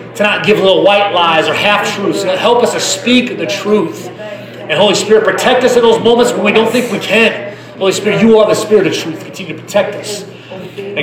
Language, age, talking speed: English, 30-49, 225 wpm